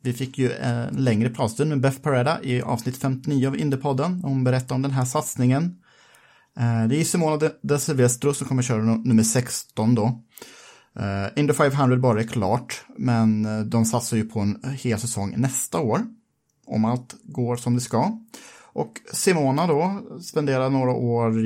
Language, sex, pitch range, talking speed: Swedish, male, 110-135 Hz, 165 wpm